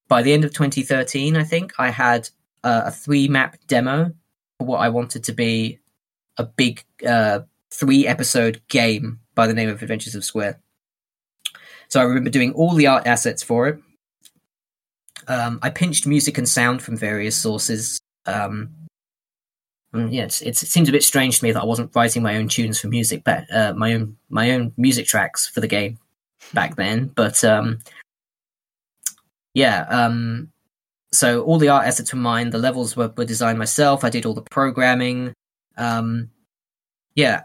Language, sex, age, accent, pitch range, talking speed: English, male, 10-29, British, 115-140 Hz, 175 wpm